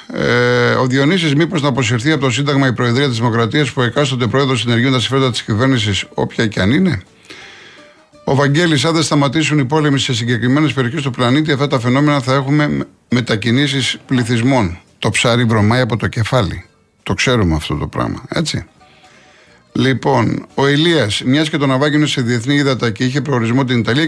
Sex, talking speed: male, 180 wpm